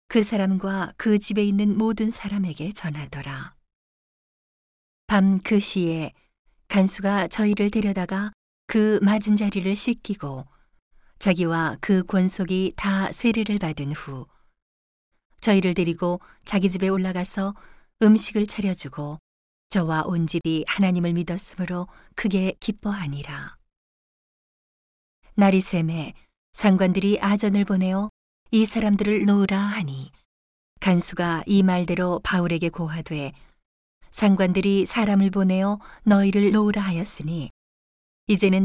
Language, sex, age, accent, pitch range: Korean, female, 40-59, native, 165-200 Hz